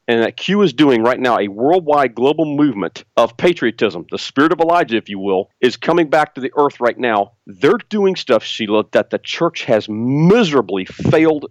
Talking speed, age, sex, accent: 200 wpm, 40-59, male, American